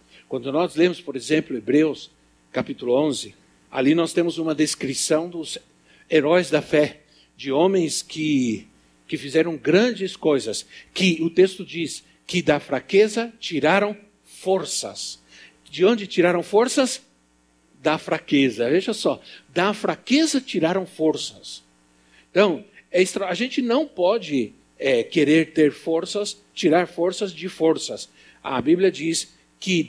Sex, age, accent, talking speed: male, 60-79, Brazilian, 120 wpm